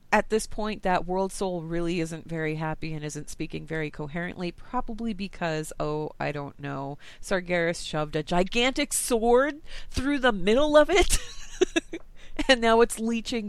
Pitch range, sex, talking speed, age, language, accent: 155-205 Hz, female, 155 wpm, 30-49, English, American